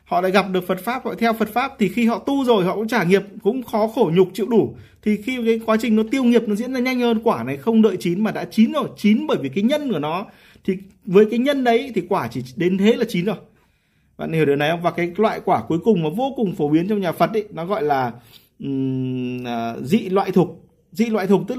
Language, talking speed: Vietnamese, 275 wpm